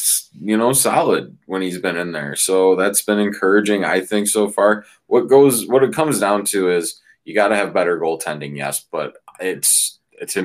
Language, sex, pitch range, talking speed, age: English, male, 80-100 Hz, 195 wpm, 20-39